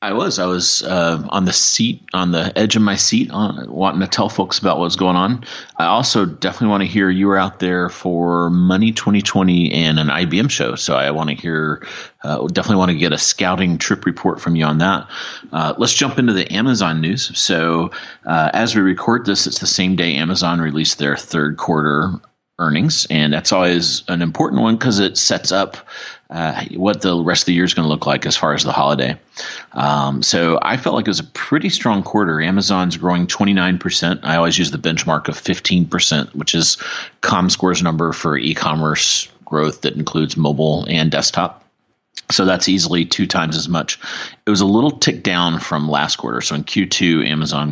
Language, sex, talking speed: English, male, 205 wpm